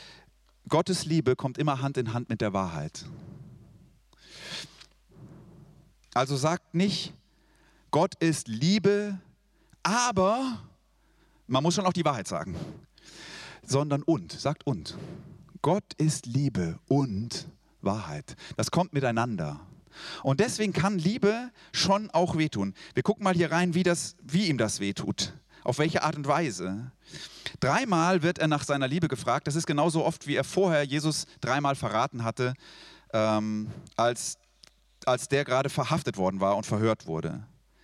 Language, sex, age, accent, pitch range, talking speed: German, male, 40-59, German, 120-170 Hz, 140 wpm